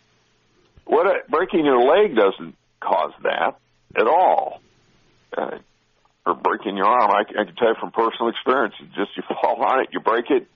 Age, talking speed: 60-79, 175 wpm